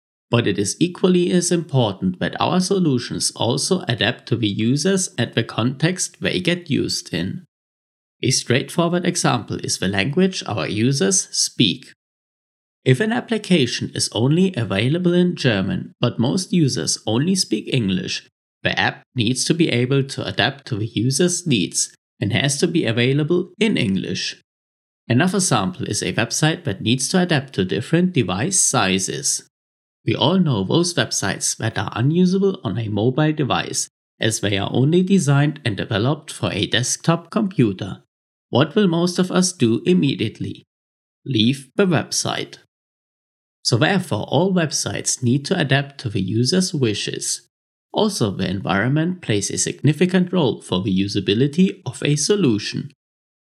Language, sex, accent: English, male, German